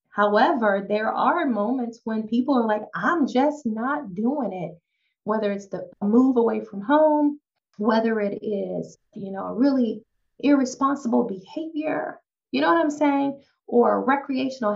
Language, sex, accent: English, female, American